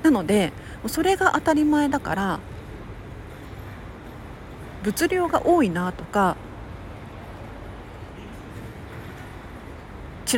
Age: 40-59